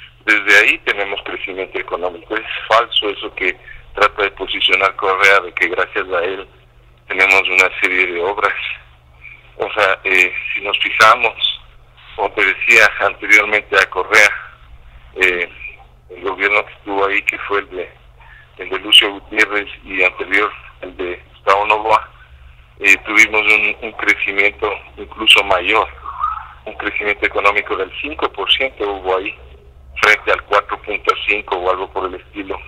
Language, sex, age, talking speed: Spanish, male, 50-69, 135 wpm